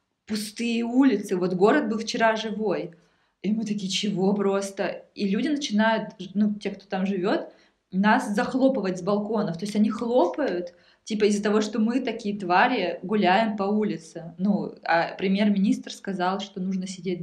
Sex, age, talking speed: female, 20-39, 155 wpm